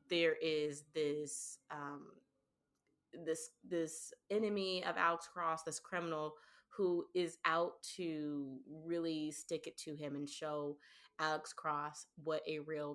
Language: English